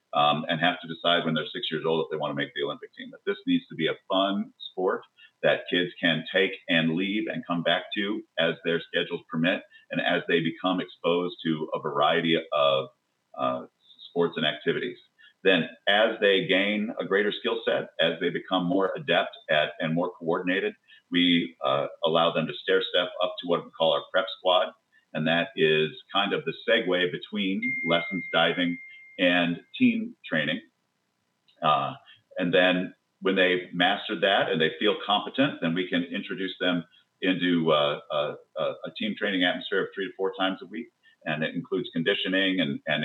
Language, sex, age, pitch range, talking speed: English, male, 40-59, 85-100 Hz, 185 wpm